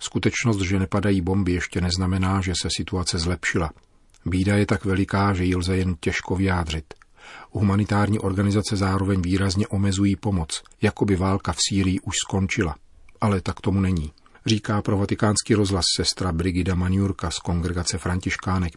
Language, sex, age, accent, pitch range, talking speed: Czech, male, 40-59, native, 90-100 Hz, 150 wpm